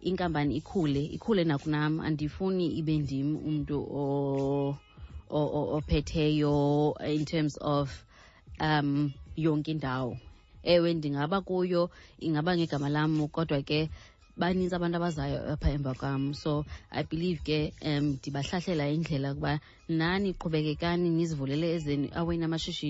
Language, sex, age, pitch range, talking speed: English, female, 20-39, 145-165 Hz, 45 wpm